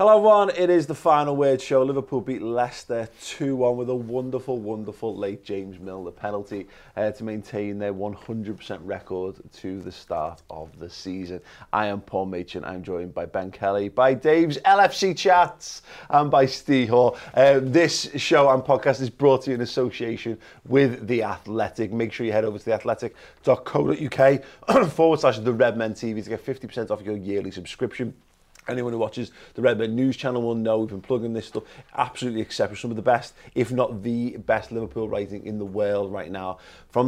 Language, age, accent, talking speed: English, 30-49, British, 190 wpm